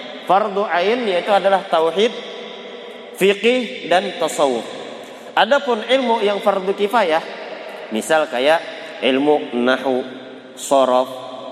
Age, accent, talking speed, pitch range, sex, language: 30-49, native, 95 wpm, 160-225 Hz, male, Indonesian